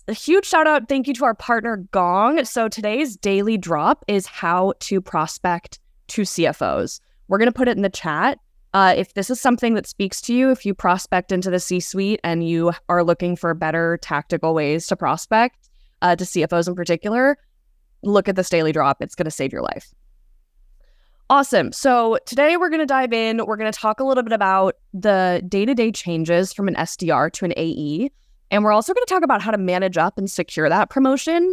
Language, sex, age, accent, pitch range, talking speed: English, female, 20-39, American, 170-240 Hz, 210 wpm